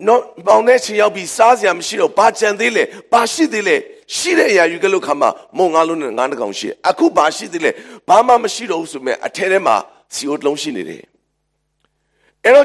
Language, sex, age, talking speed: English, male, 50-69, 125 wpm